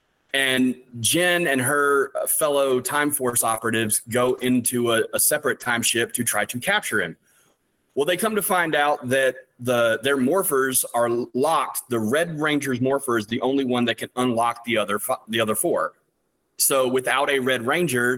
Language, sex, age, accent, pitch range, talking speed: English, male, 30-49, American, 115-145 Hz, 180 wpm